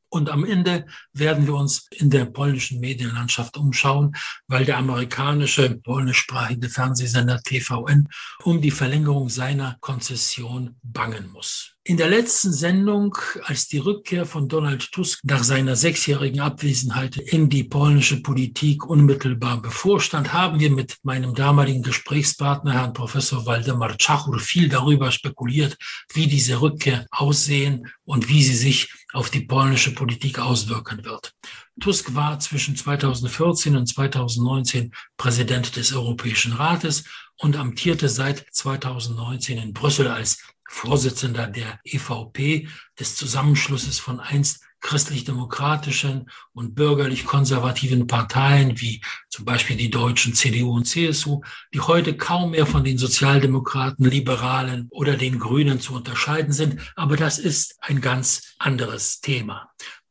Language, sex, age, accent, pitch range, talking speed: English, male, 60-79, German, 125-145 Hz, 130 wpm